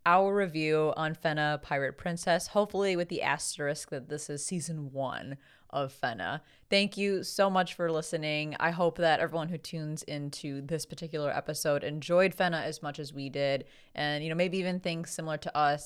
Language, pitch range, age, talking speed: English, 140-175 Hz, 20-39, 185 wpm